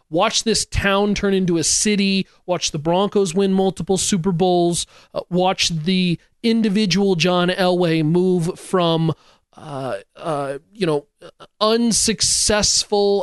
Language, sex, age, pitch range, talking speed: English, male, 30-49, 155-190 Hz, 125 wpm